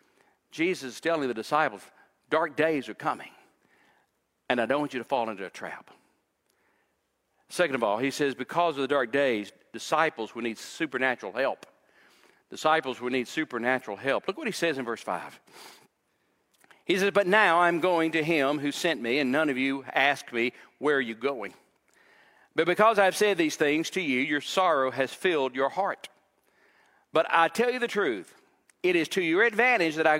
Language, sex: English, male